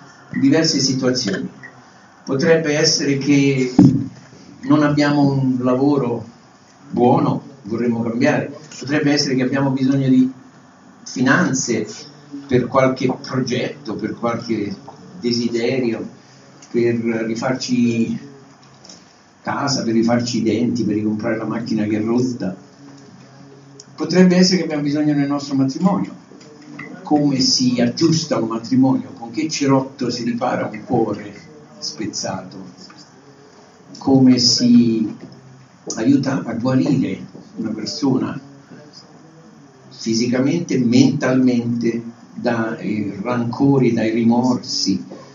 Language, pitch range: Italian, 120-150 Hz